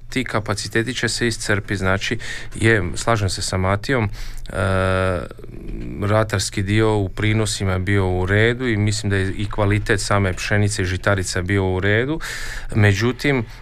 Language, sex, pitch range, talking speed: Croatian, male, 100-115 Hz, 145 wpm